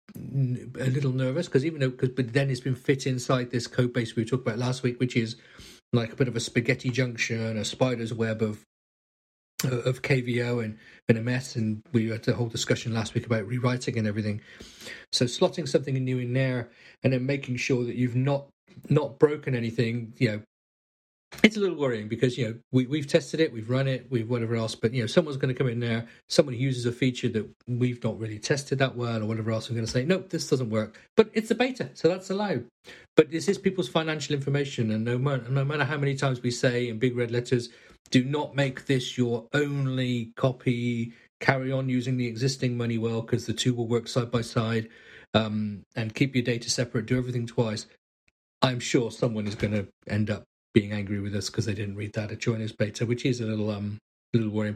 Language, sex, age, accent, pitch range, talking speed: English, male, 40-59, British, 115-135 Hz, 220 wpm